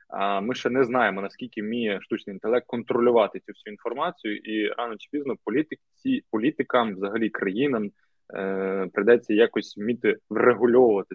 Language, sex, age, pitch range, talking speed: Ukrainian, male, 20-39, 105-135 Hz, 140 wpm